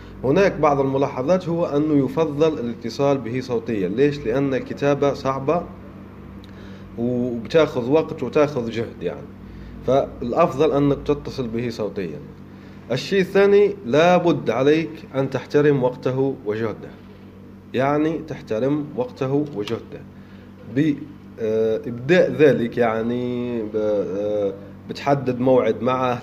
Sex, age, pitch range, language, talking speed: male, 30-49, 110-150 Hz, Arabic, 95 wpm